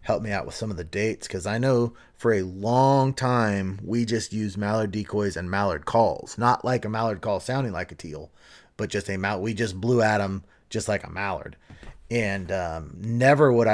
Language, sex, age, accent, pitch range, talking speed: English, male, 30-49, American, 100-120 Hz, 215 wpm